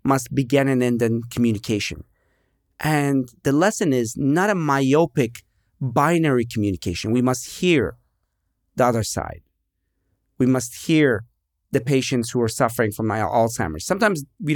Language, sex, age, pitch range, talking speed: English, male, 40-59, 105-140 Hz, 135 wpm